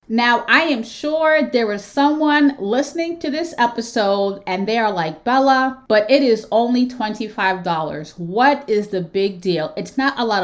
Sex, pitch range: female, 205-265 Hz